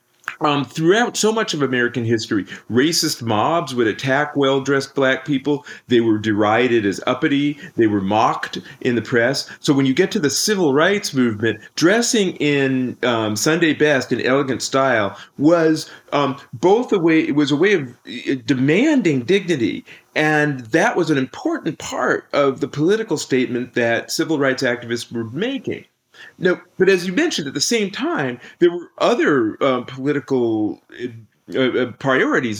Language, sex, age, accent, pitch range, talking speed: English, male, 40-59, American, 115-150 Hz, 160 wpm